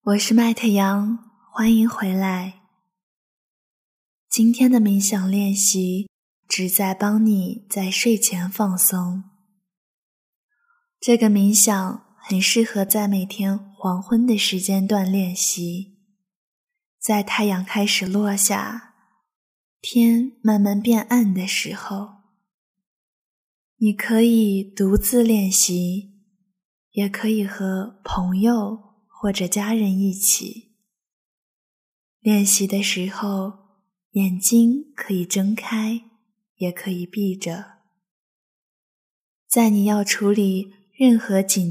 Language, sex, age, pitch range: Chinese, female, 20-39, 190-220 Hz